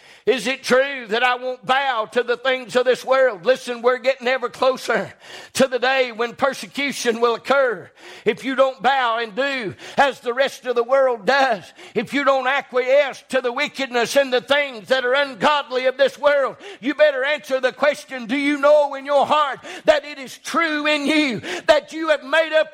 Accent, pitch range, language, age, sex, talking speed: American, 210-290 Hz, English, 50-69, male, 200 wpm